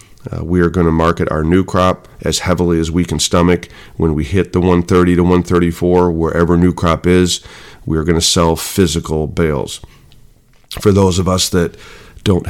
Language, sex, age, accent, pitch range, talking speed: English, male, 40-59, American, 85-95 Hz, 185 wpm